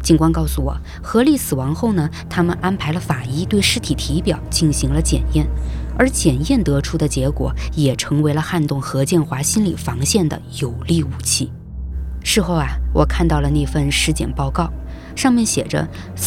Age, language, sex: 20-39, Chinese, female